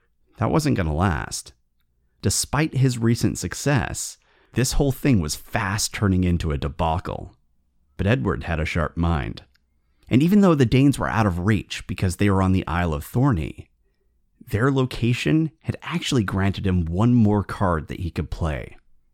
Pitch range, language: 80-120 Hz, English